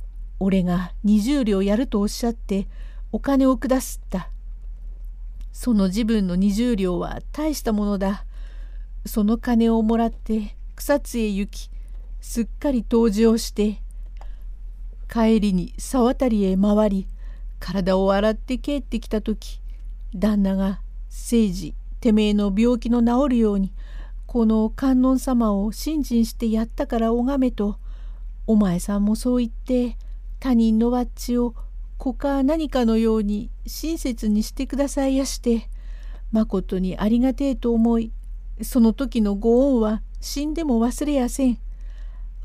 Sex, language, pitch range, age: female, Japanese, 205-245 Hz, 50-69